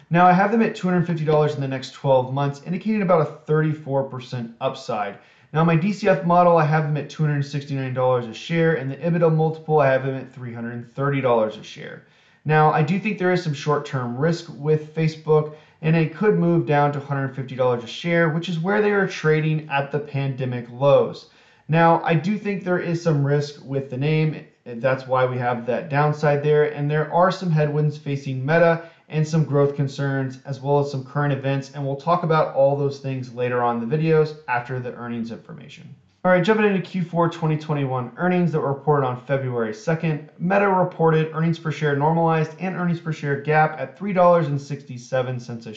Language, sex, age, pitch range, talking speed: English, male, 30-49, 130-165 Hz, 190 wpm